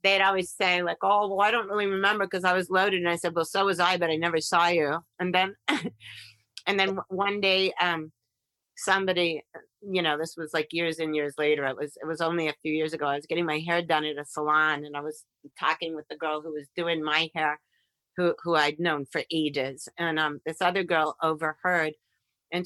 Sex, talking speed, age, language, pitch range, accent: female, 230 wpm, 40-59, English, 160-195 Hz, American